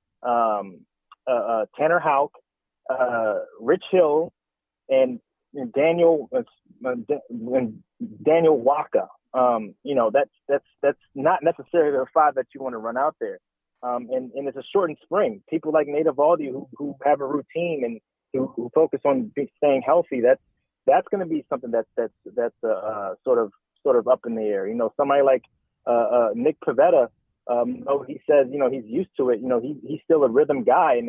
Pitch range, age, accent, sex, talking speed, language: 135-220 Hz, 30-49, American, male, 195 wpm, English